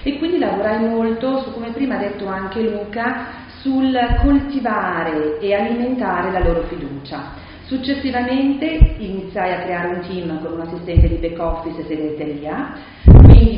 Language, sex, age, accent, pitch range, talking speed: Italian, female, 40-59, native, 165-215 Hz, 130 wpm